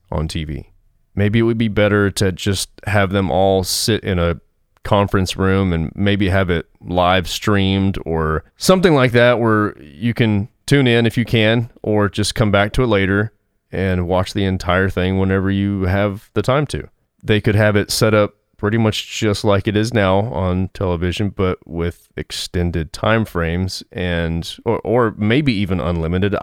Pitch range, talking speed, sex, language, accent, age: 90-110 Hz, 180 wpm, male, English, American, 30-49